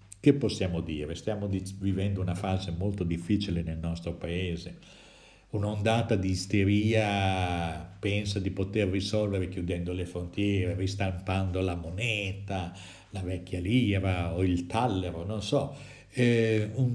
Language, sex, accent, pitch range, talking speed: Italian, male, native, 95-105 Hz, 125 wpm